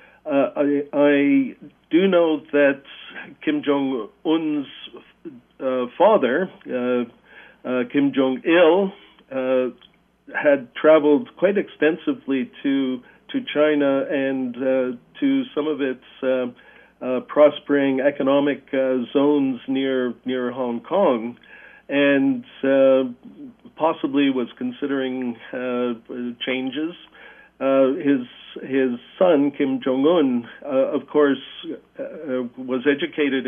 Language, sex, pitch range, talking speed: English, male, 130-150 Hz, 100 wpm